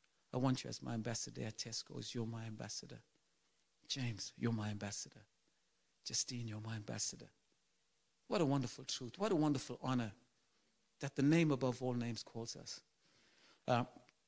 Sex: male